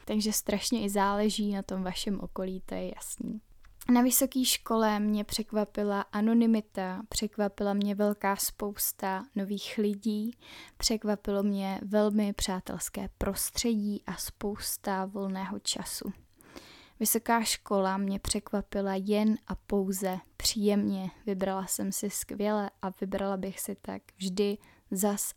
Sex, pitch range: female, 195-220 Hz